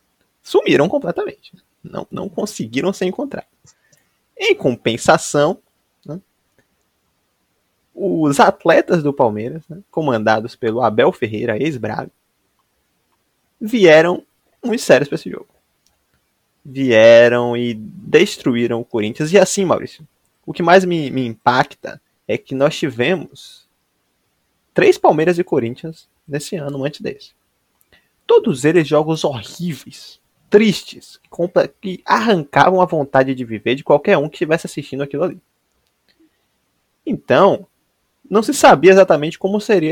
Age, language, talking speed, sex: 20-39, Portuguese, 115 wpm, male